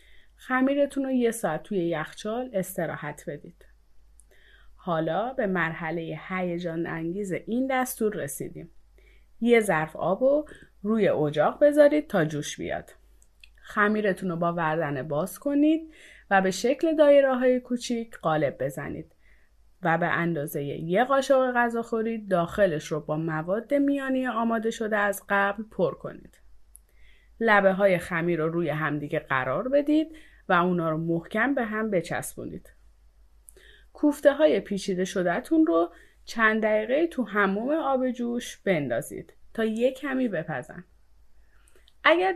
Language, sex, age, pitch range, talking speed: Persian, female, 30-49, 165-255 Hz, 125 wpm